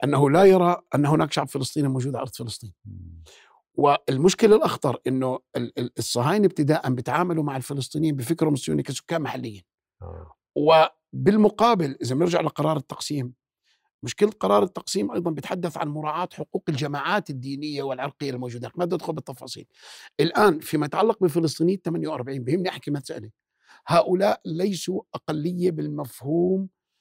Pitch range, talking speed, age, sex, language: 140-185 Hz, 125 wpm, 50-69, male, Arabic